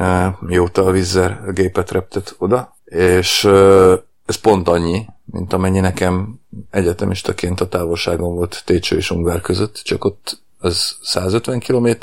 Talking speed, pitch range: 140 wpm, 90-105 Hz